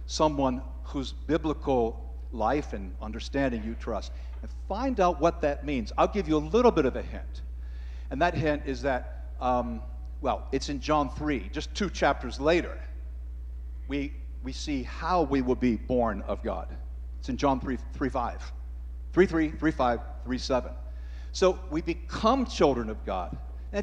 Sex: male